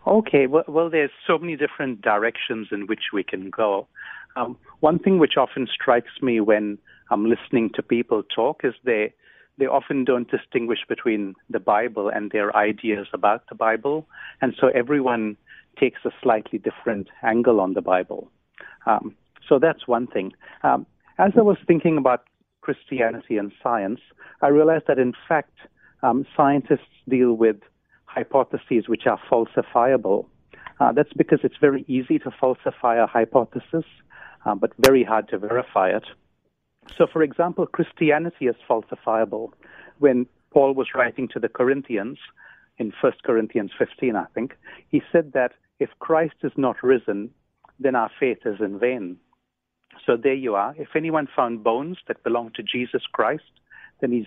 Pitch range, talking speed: 115-155 Hz, 160 wpm